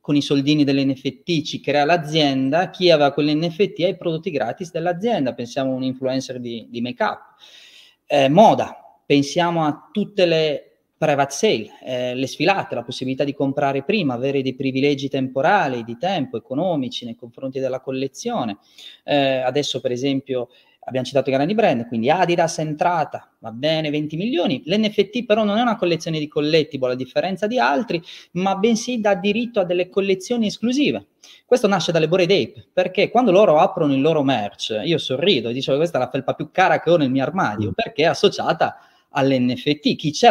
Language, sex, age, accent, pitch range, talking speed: Italian, male, 30-49, native, 135-185 Hz, 175 wpm